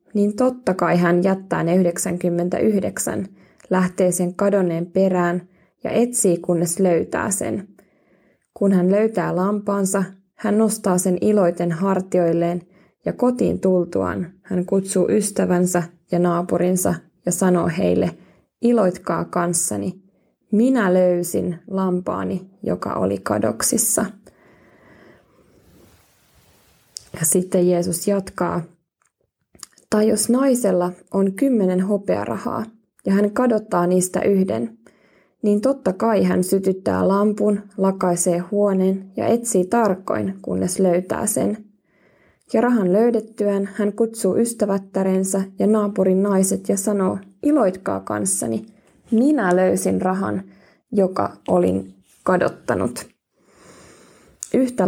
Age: 20-39